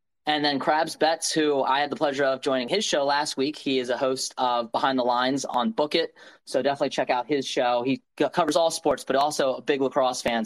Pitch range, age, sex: 125-150 Hz, 20-39, male